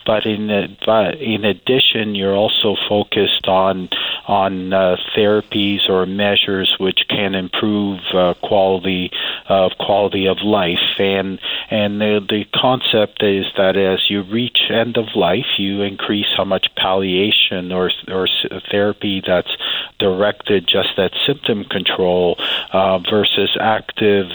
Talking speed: 135 wpm